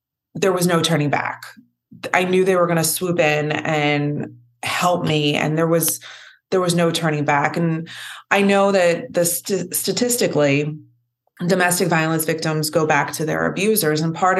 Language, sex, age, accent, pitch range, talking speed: English, female, 20-39, American, 145-170 Hz, 170 wpm